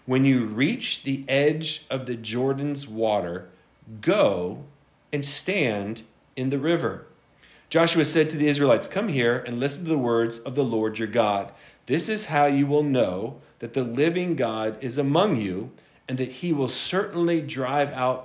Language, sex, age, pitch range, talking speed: English, male, 40-59, 115-150 Hz, 170 wpm